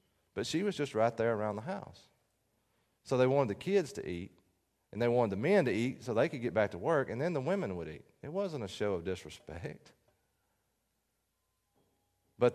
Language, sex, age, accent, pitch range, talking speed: English, male, 40-59, American, 90-130 Hz, 205 wpm